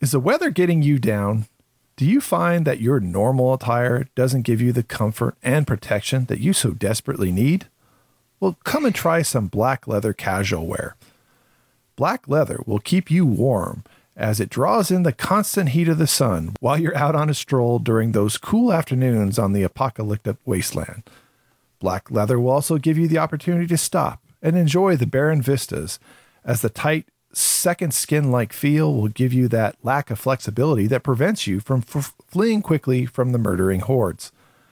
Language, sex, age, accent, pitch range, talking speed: English, male, 40-59, American, 110-155 Hz, 180 wpm